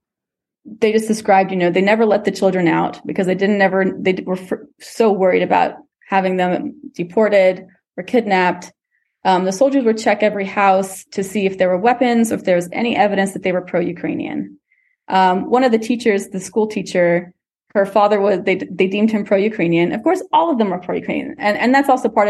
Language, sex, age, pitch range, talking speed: English, female, 20-39, 185-225 Hz, 215 wpm